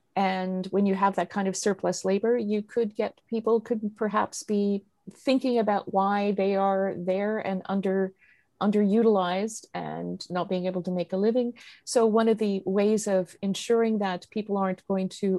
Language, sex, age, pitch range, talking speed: English, female, 50-69, 175-205 Hz, 175 wpm